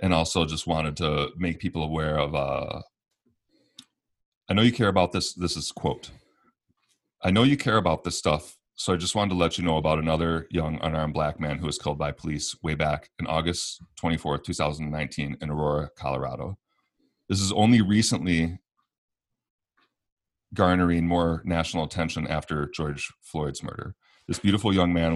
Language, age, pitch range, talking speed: English, 30-49, 75-90 Hz, 165 wpm